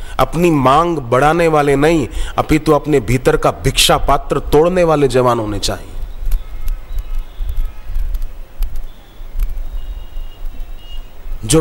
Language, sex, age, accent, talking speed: Hindi, male, 40-59, native, 95 wpm